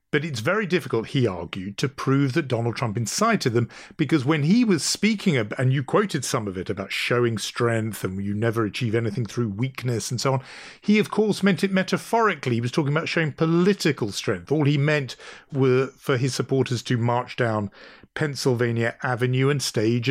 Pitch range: 115-160 Hz